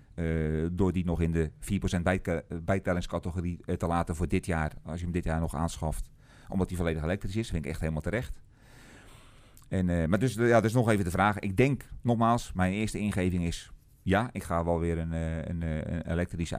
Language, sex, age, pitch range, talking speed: Dutch, male, 40-59, 80-100 Hz, 195 wpm